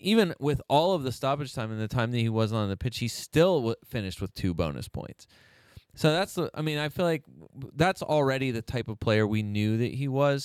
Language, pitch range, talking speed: English, 95-125 Hz, 240 wpm